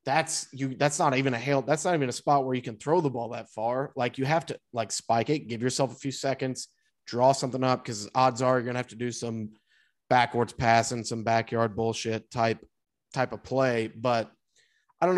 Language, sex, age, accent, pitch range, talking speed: English, male, 30-49, American, 115-150 Hz, 220 wpm